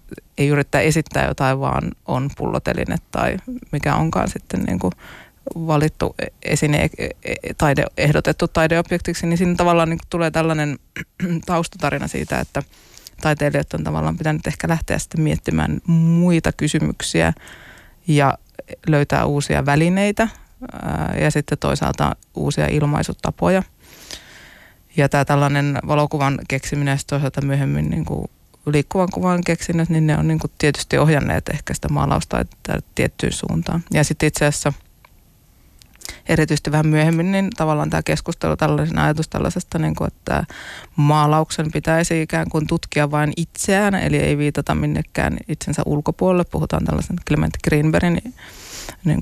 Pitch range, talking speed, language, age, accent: 145-170 Hz, 115 wpm, Finnish, 20-39, native